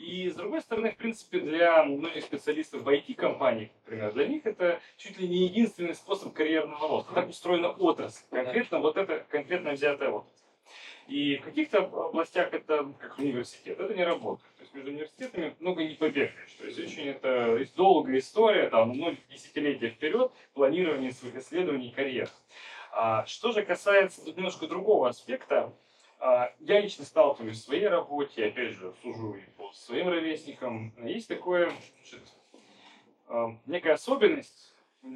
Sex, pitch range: male, 140-190 Hz